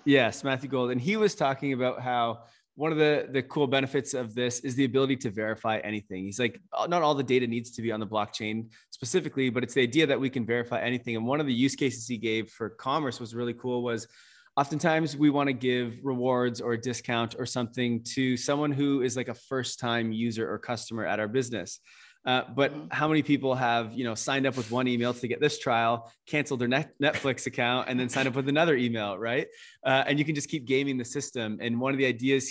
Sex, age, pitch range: male, 20-39, 115-135 Hz